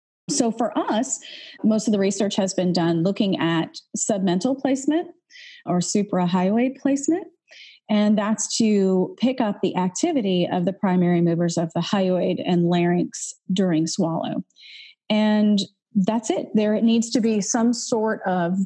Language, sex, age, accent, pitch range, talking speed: English, female, 30-49, American, 180-230 Hz, 150 wpm